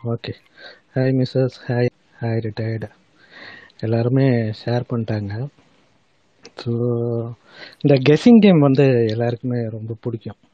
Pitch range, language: 115-135 Hz, Tamil